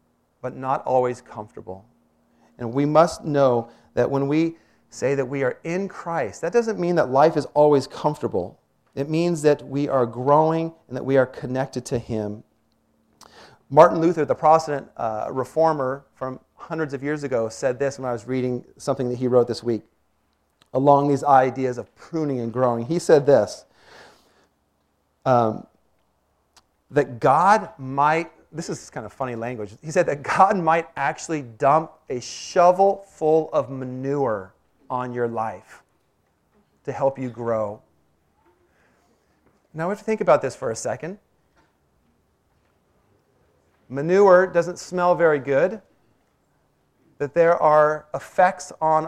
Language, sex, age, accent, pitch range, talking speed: English, male, 40-59, American, 120-160 Hz, 145 wpm